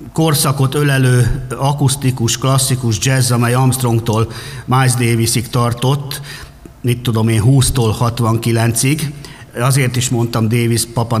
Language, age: Hungarian, 60-79